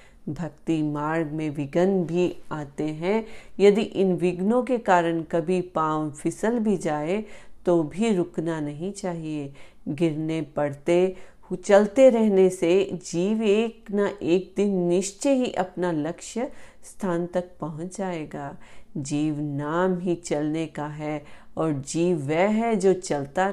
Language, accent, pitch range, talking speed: Hindi, native, 155-195 Hz, 135 wpm